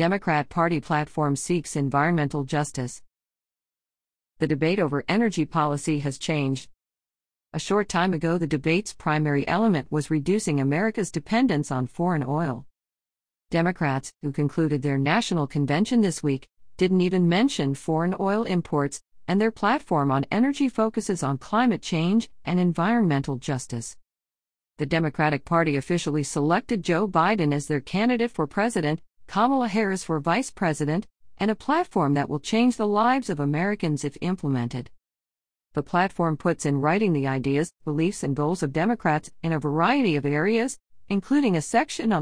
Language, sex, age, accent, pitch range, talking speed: English, female, 50-69, American, 145-200 Hz, 150 wpm